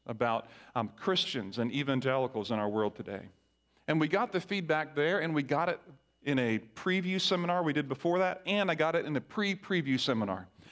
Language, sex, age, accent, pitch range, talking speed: English, male, 40-59, American, 125-195 Hz, 195 wpm